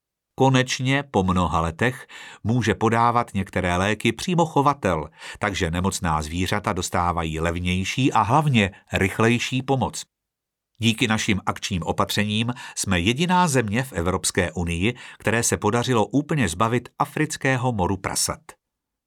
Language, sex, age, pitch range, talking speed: Czech, male, 50-69, 95-130 Hz, 115 wpm